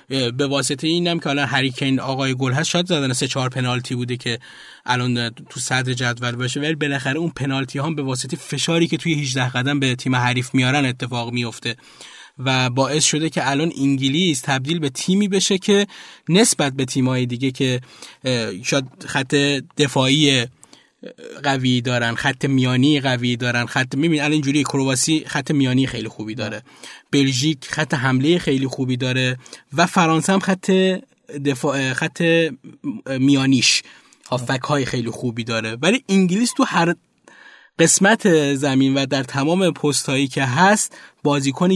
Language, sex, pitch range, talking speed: Persian, male, 130-160 Hz, 150 wpm